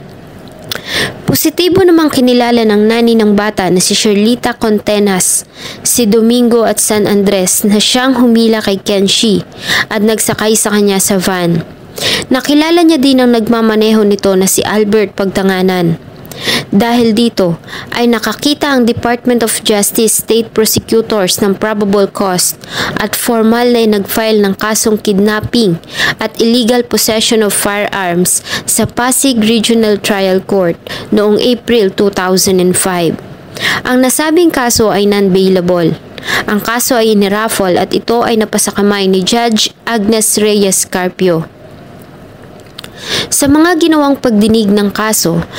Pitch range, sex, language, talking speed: 195-230 Hz, female, English, 125 wpm